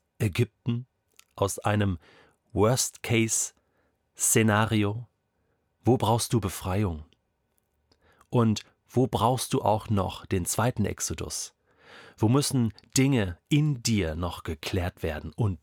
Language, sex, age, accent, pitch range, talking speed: German, male, 40-59, German, 95-120 Hz, 100 wpm